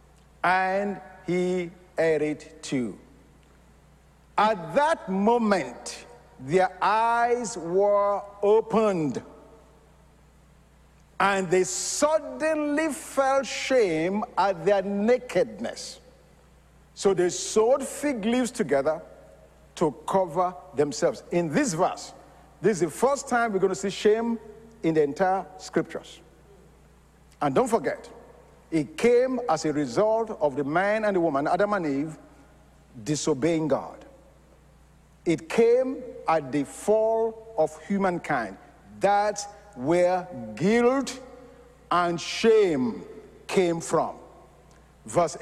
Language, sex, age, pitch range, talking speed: English, male, 50-69, 170-235 Hz, 105 wpm